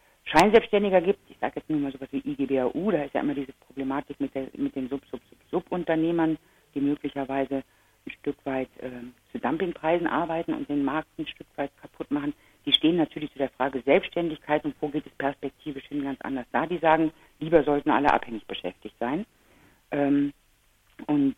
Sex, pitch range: female, 130-150 Hz